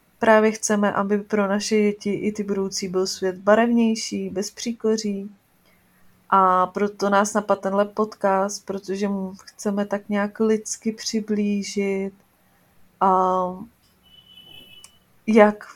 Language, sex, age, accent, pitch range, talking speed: Czech, female, 30-49, native, 195-215 Hz, 110 wpm